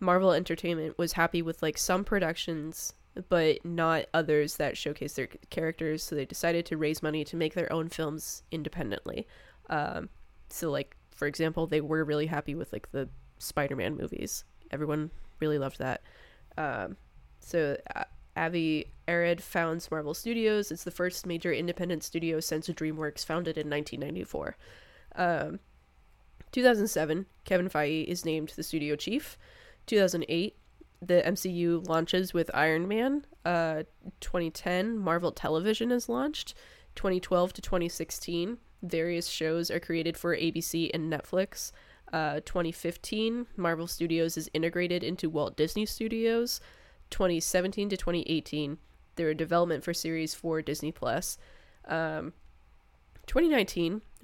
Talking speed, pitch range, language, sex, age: 135 wpm, 155-180 Hz, English, female, 20-39